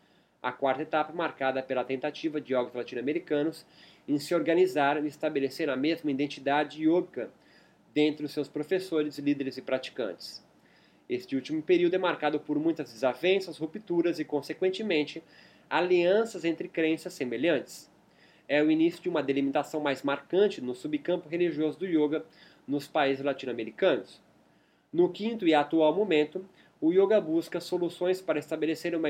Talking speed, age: 140 wpm, 20-39